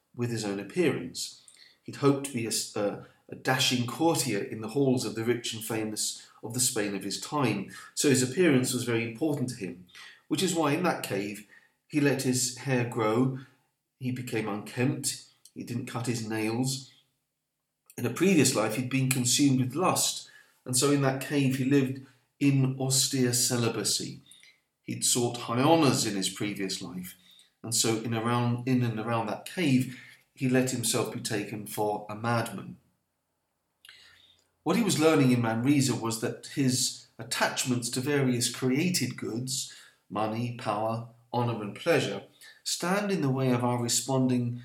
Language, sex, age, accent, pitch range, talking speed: English, male, 40-59, British, 110-130 Hz, 165 wpm